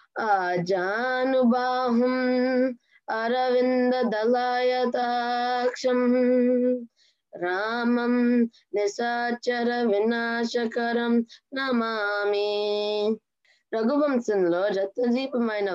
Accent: native